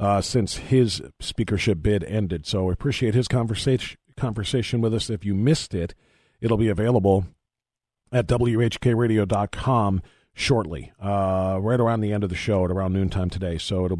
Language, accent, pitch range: English, American, 100-130 Hz